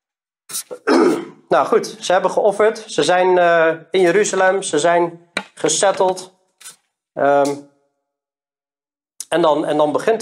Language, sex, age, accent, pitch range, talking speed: Dutch, male, 40-59, Dutch, 150-205 Hz, 105 wpm